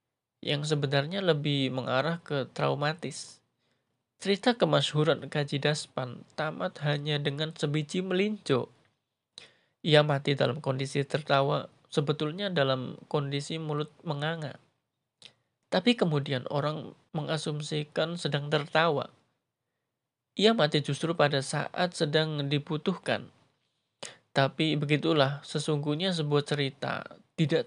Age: 20-39